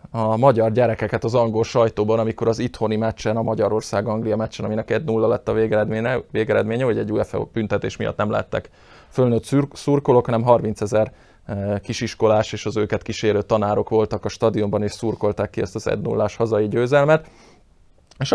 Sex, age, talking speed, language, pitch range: male, 20-39, 165 wpm, Hungarian, 105-115 Hz